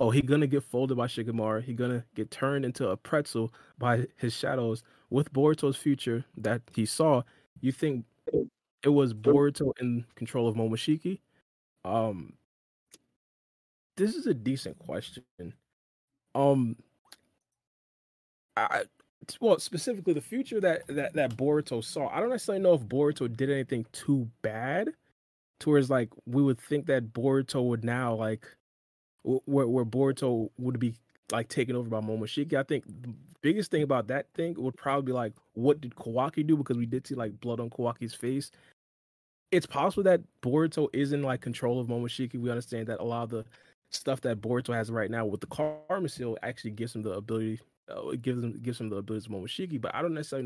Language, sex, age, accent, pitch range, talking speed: English, male, 20-39, American, 115-140 Hz, 180 wpm